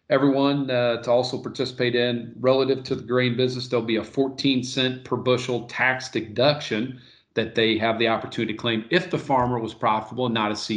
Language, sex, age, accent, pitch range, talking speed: English, male, 40-59, American, 110-135 Hz, 200 wpm